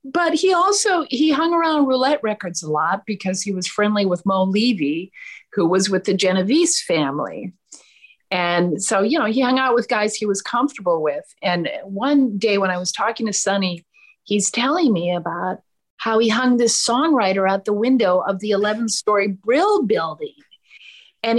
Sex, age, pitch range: female, 50-69, 195-275 Hz